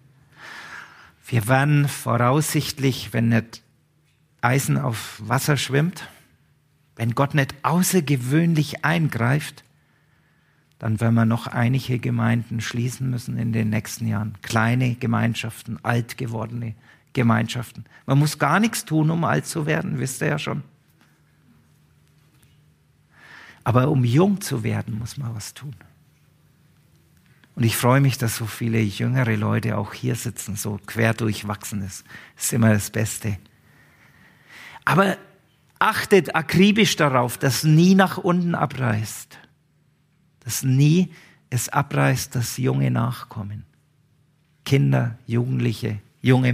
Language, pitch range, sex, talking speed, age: German, 115-145 Hz, male, 120 wpm, 50-69